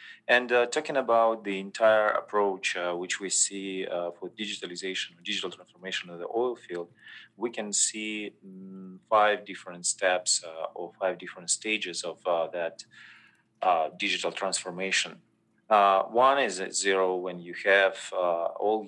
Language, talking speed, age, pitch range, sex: English, 150 wpm, 30-49, 90-100 Hz, male